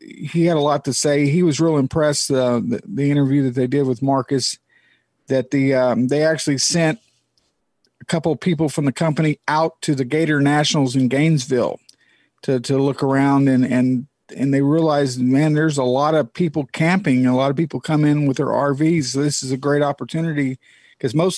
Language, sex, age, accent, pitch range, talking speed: English, male, 50-69, American, 135-160 Hz, 200 wpm